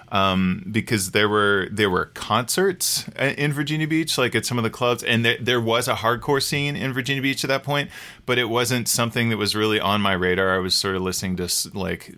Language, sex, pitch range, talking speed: English, male, 90-110 Hz, 225 wpm